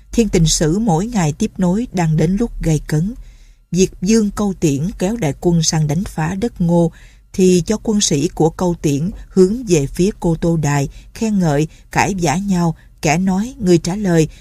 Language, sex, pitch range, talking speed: Vietnamese, female, 155-200 Hz, 195 wpm